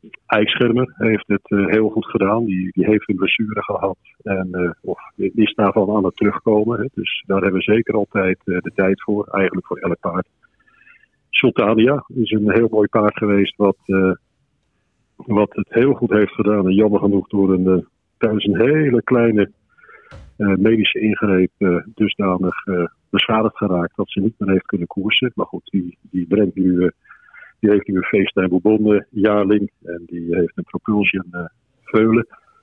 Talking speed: 170 wpm